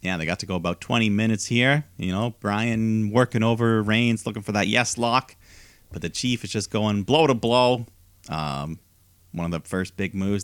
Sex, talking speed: male, 205 wpm